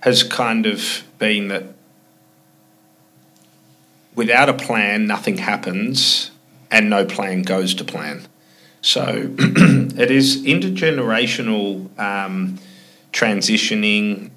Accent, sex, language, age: Australian, male, English, 30-49